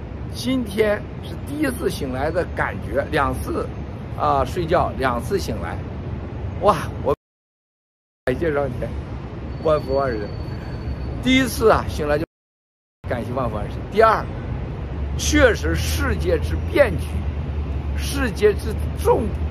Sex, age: male, 50-69